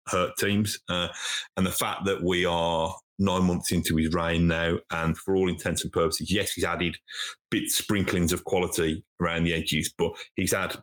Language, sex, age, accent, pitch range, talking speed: English, male, 30-49, British, 85-100 Hz, 190 wpm